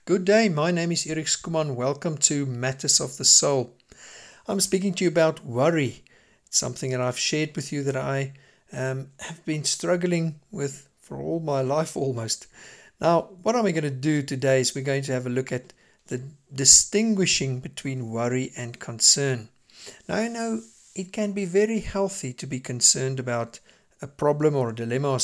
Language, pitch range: English, 130-165 Hz